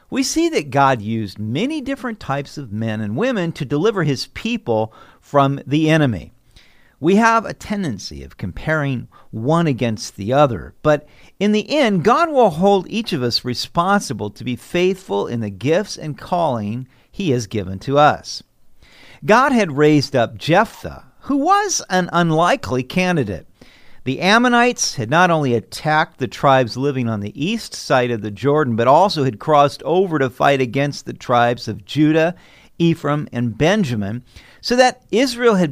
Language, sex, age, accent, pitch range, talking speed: English, male, 50-69, American, 120-180 Hz, 165 wpm